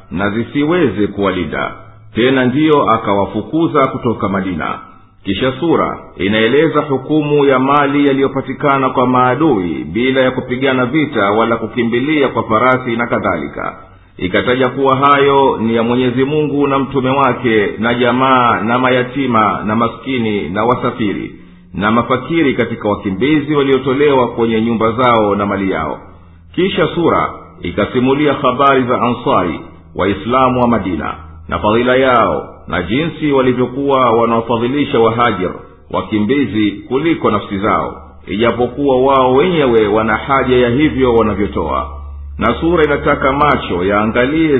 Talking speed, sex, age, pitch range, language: 120 wpm, male, 50-69, 105-135 Hz, Swahili